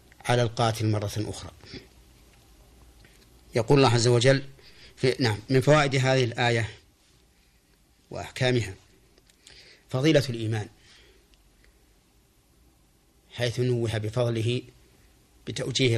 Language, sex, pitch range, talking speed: Arabic, male, 100-125 Hz, 75 wpm